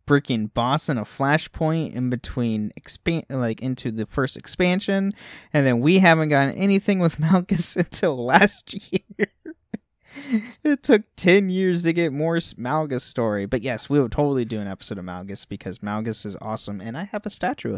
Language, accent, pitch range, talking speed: English, American, 110-145 Hz, 175 wpm